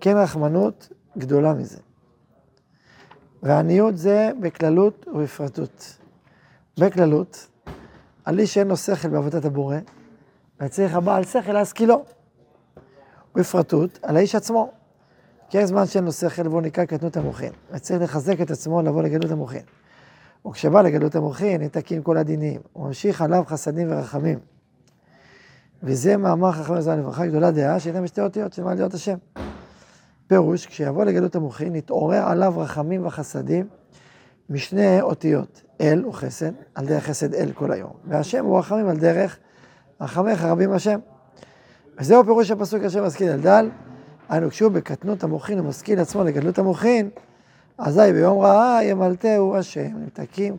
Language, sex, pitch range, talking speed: Hebrew, male, 150-195 Hz, 130 wpm